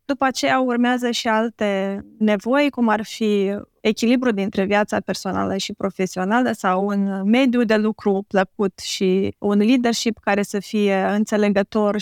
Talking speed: 140 wpm